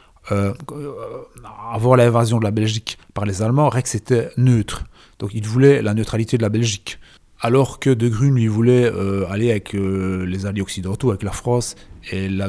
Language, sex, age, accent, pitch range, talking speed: French, male, 30-49, French, 100-125 Hz, 185 wpm